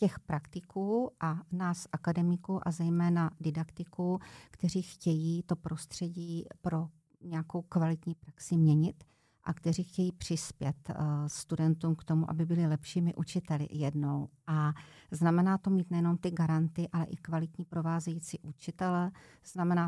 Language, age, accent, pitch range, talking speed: Czech, 50-69, native, 165-180 Hz, 125 wpm